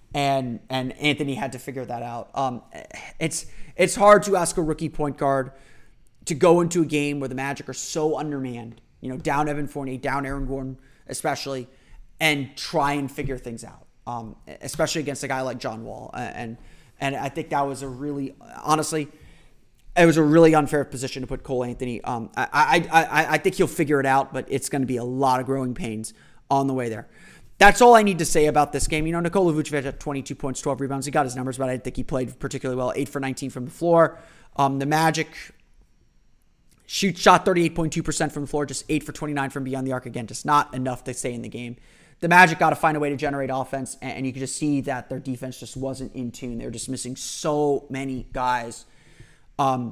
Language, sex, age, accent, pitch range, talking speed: English, male, 30-49, American, 130-150 Hz, 225 wpm